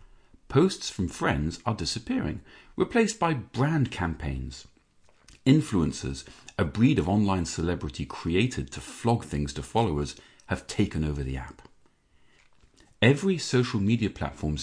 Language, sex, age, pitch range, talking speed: English, male, 40-59, 75-120 Hz, 125 wpm